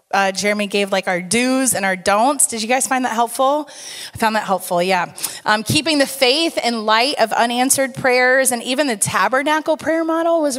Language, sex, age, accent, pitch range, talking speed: English, female, 30-49, American, 205-275 Hz, 205 wpm